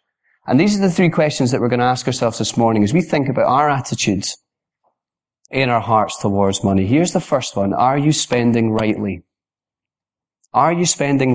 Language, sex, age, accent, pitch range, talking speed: English, male, 30-49, British, 115-165 Hz, 190 wpm